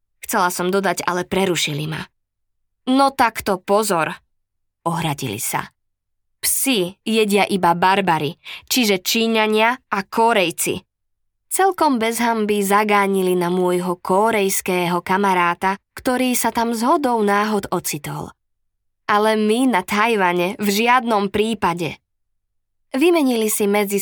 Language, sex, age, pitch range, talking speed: Slovak, female, 20-39, 160-220 Hz, 105 wpm